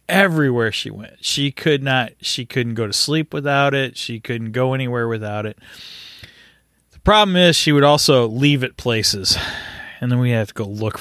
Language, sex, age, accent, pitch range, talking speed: English, male, 30-49, American, 115-155 Hz, 190 wpm